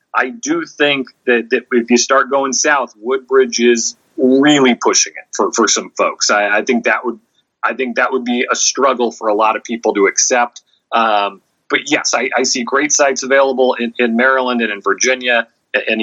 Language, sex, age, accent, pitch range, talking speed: English, male, 30-49, American, 110-145 Hz, 200 wpm